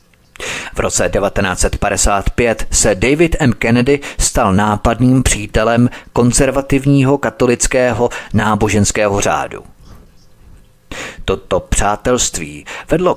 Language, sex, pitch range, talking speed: Czech, male, 100-115 Hz, 75 wpm